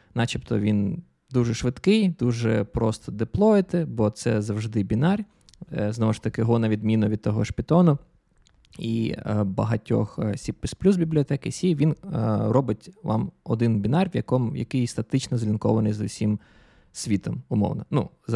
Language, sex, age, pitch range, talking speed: Ukrainian, male, 20-39, 110-160 Hz, 135 wpm